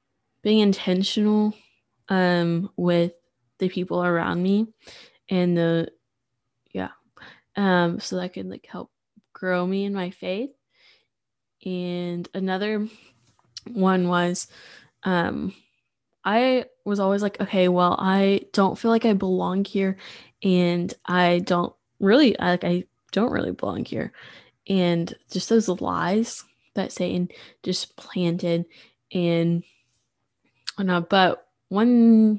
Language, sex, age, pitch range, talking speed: English, female, 10-29, 175-210 Hz, 115 wpm